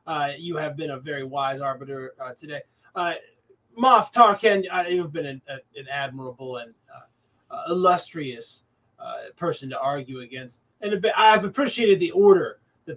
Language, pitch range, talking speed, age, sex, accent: English, 140-195 Hz, 160 wpm, 20-39, male, American